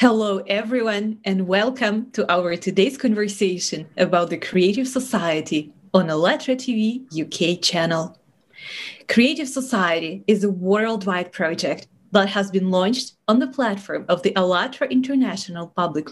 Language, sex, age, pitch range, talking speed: English, female, 30-49, 180-235 Hz, 130 wpm